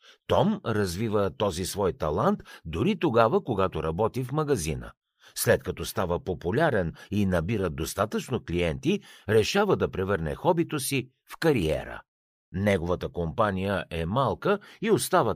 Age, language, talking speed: 60-79, Bulgarian, 125 wpm